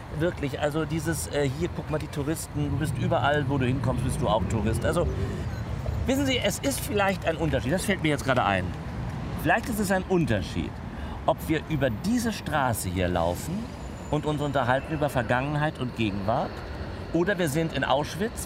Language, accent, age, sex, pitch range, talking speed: German, German, 50-69, male, 115-185 Hz, 185 wpm